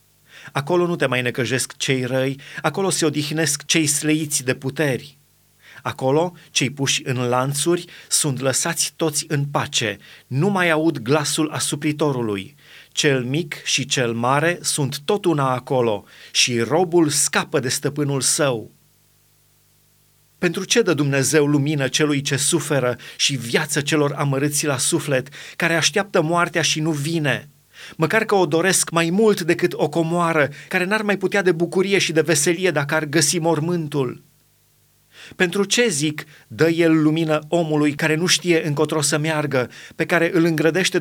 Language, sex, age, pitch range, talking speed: Romanian, male, 30-49, 140-170 Hz, 150 wpm